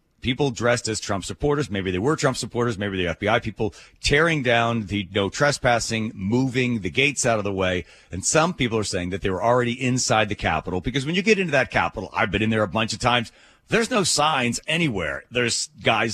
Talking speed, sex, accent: 220 wpm, male, American